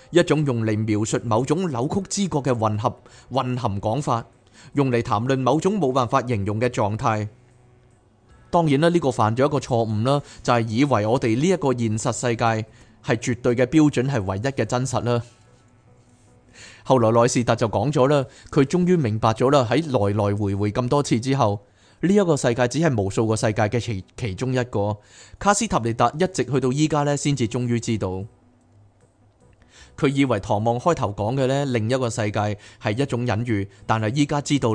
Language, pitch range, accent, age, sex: Chinese, 110-145 Hz, native, 20-39, male